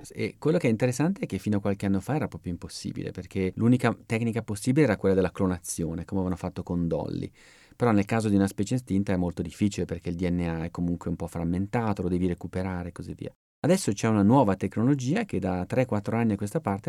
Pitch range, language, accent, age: 95-125 Hz, Italian, native, 30-49